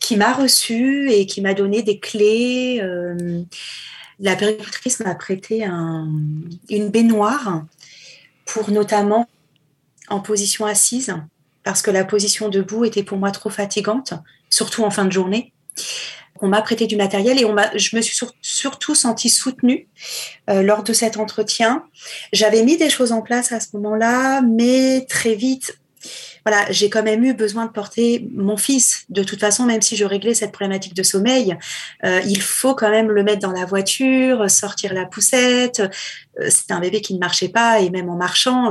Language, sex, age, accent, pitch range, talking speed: French, female, 30-49, French, 190-230 Hz, 180 wpm